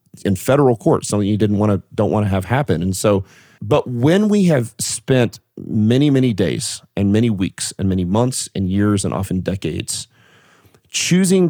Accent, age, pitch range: American, 40-59, 100-125 Hz